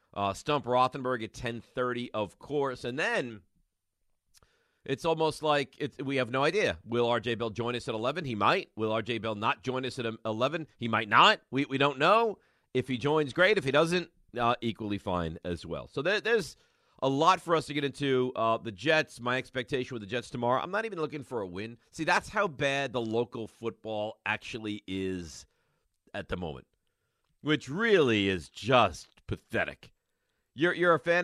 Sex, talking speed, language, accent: male, 190 wpm, English, American